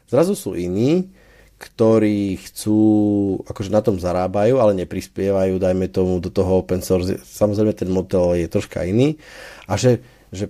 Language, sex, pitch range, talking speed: Slovak, male, 95-115 Hz, 150 wpm